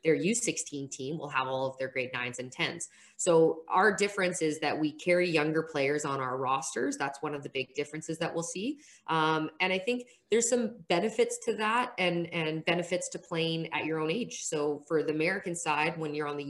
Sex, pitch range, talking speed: female, 140-170 Hz, 220 wpm